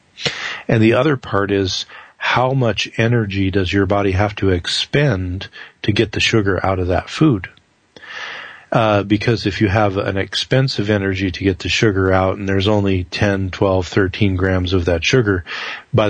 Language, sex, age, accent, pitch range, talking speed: English, male, 40-59, American, 95-110 Hz, 170 wpm